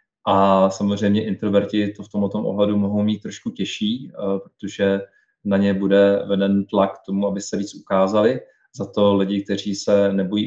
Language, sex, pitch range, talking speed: Czech, male, 100-110 Hz, 160 wpm